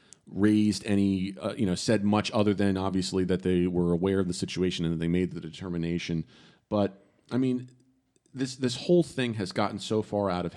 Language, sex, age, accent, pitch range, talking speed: English, male, 40-59, American, 90-100 Hz, 205 wpm